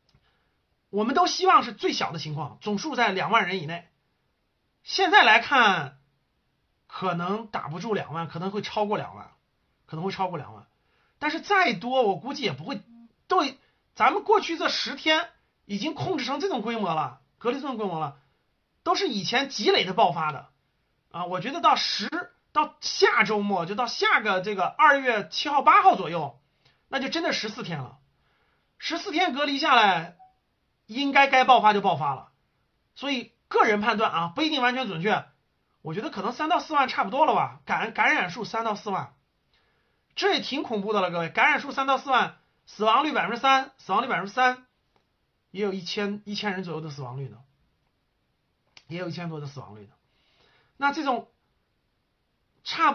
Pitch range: 200-295 Hz